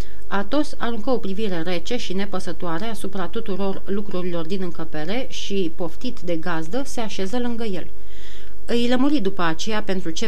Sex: female